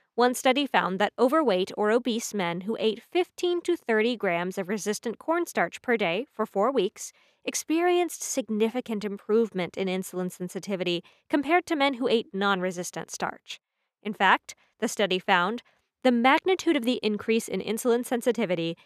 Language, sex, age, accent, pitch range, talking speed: English, female, 20-39, American, 195-265 Hz, 155 wpm